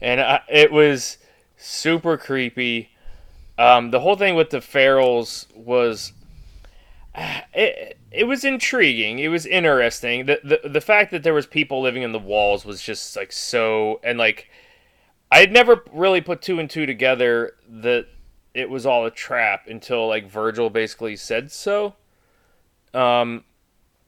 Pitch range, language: 110-150 Hz, English